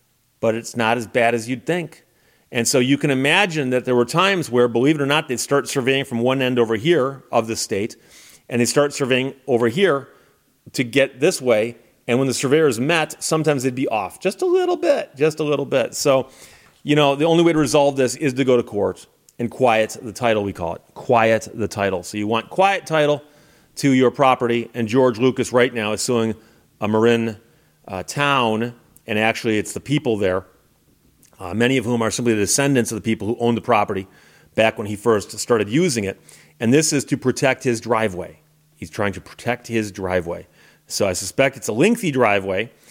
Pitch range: 115-145 Hz